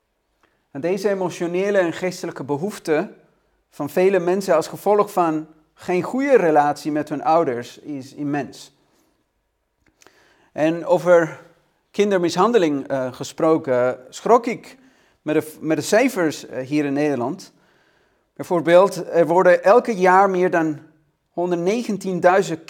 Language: Dutch